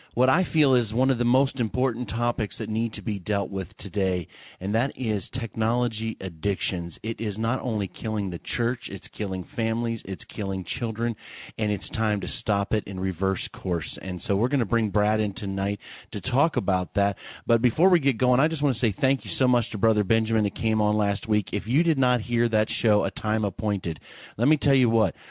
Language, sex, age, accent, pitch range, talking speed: English, male, 40-59, American, 105-125 Hz, 225 wpm